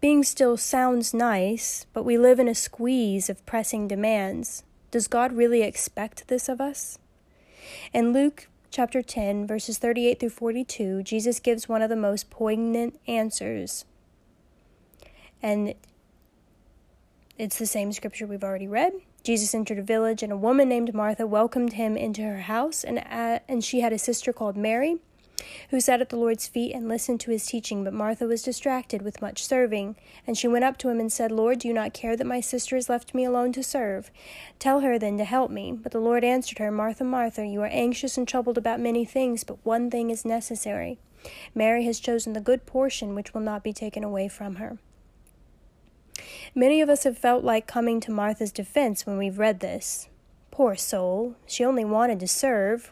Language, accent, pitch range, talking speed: English, American, 210-245 Hz, 190 wpm